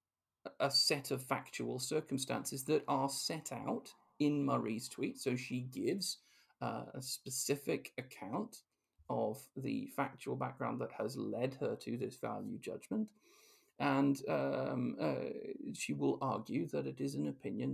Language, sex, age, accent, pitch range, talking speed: English, male, 40-59, British, 125-155 Hz, 140 wpm